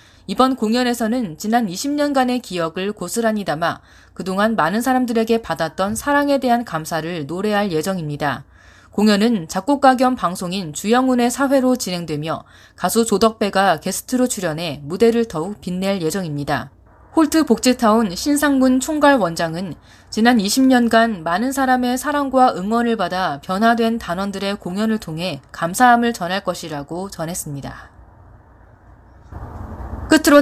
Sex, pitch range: female, 160-240 Hz